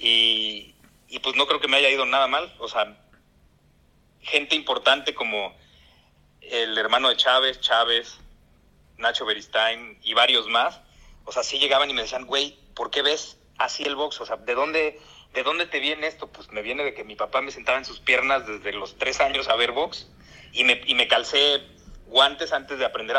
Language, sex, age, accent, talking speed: Spanish, male, 40-59, Mexican, 195 wpm